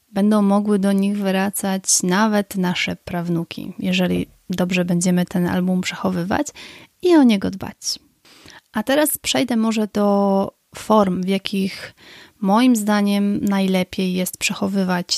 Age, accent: 30-49, native